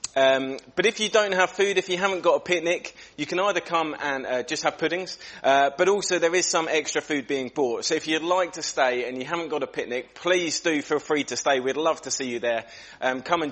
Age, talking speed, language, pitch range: 30-49, 260 wpm, English, 125-175 Hz